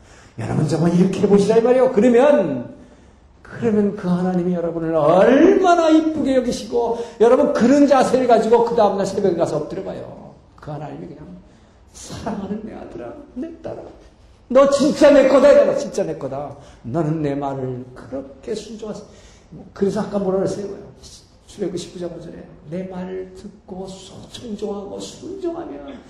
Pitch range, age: 160-225 Hz, 50-69